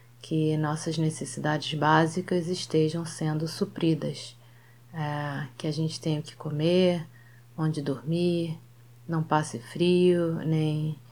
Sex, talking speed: female, 110 wpm